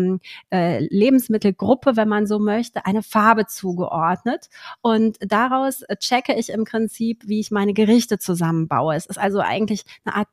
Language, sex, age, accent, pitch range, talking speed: German, female, 30-49, German, 170-205 Hz, 145 wpm